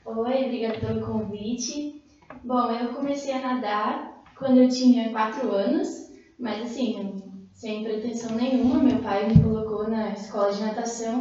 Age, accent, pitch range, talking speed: 10-29, Brazilian, 230-290 Hz, 145 wpm